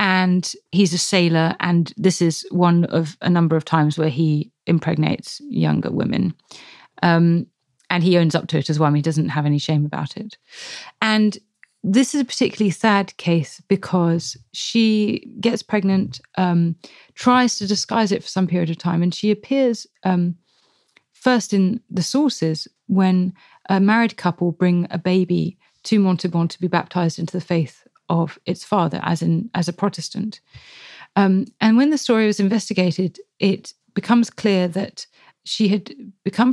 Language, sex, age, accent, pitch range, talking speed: English, female, 30-49, British, 165-200 Hz, 165 wpm